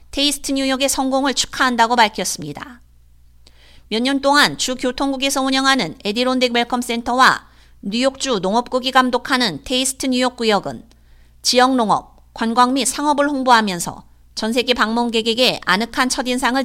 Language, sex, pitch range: Korean, female, 205-270 Hz